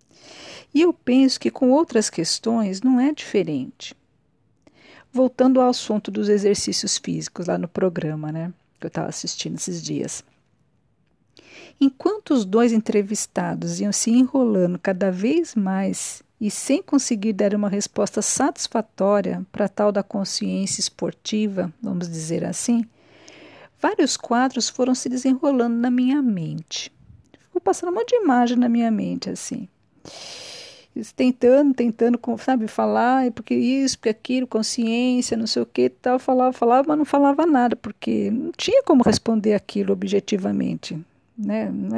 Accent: Brazilian